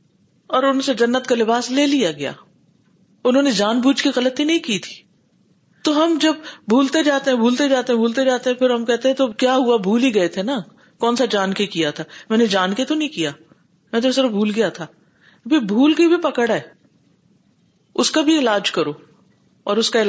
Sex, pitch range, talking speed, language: female, 195-260 Hz, 220 wpm, Urdu